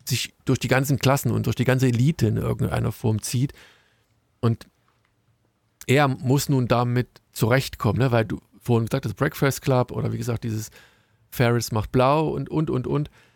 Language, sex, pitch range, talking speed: German, male, 115-145 Hz, 175 wpm